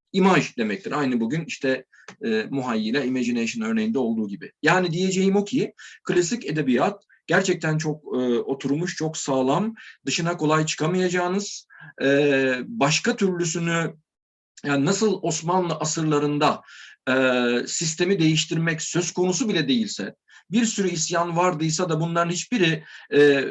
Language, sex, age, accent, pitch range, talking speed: Turkish, male, 50-69, native, 145-190 Hz, 125 wpm